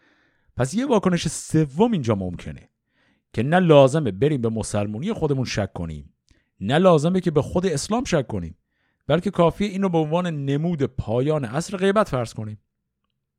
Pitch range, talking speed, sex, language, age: 100-170 Hz, 155 wpm, male, Persian, 50-69